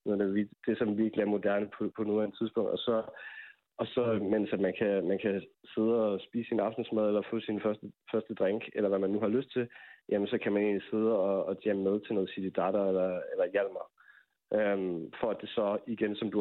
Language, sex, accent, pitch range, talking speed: Danish, male, native, 100-115 Hz, 225 wpm